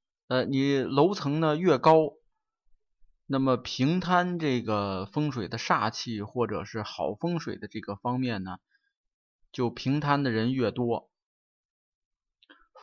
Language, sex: Chinese, male